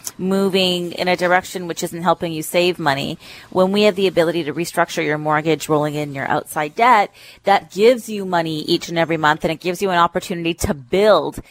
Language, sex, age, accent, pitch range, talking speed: English, female, 30-49, American, 155-200 Hz, 210 wpm